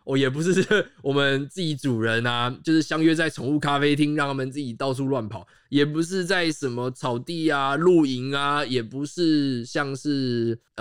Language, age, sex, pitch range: Chinese, 20-39, male, 125-170 Hz